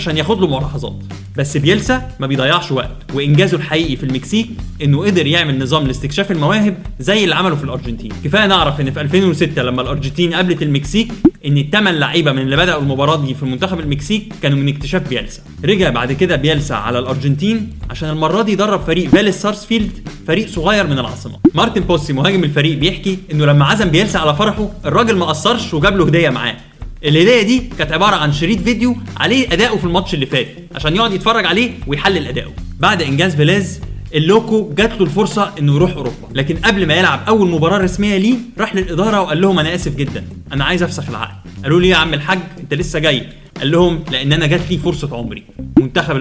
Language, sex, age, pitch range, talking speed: Arabic, male, 20-39, 140-190 Hz, 190 wpm